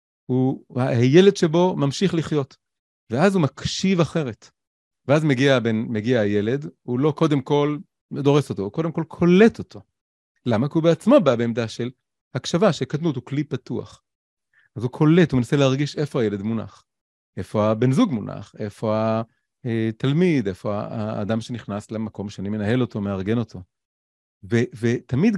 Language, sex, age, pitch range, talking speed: Hebrew, male, 30-49, 115-165 Hz, 150 wpm